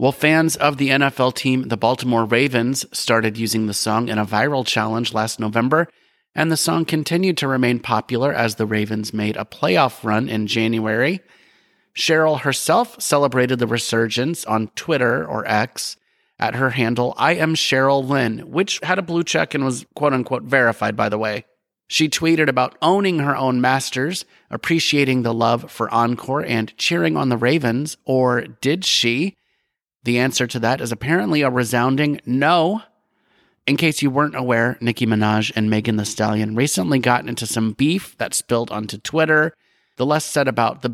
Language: English